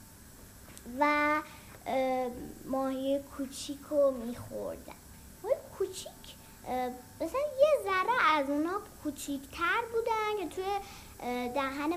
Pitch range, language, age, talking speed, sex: 265-395 Hz, Persian, 10-29, 80 wpm, female